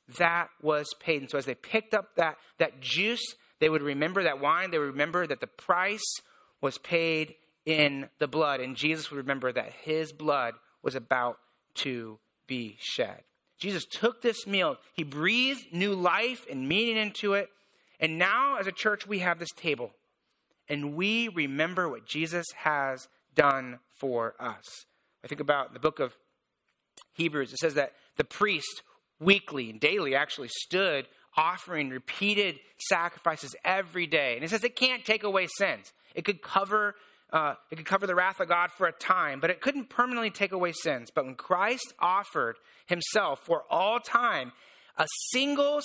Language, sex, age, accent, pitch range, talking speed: English, male, 30-49, American, 150-205 Hz, 170 wpm